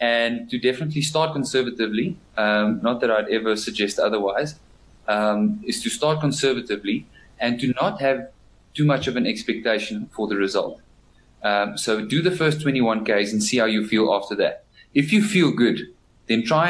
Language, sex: English, male